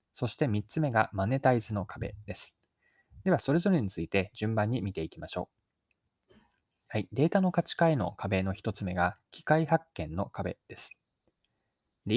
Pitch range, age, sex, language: 95-145 Hz, 20-39, male, Japanese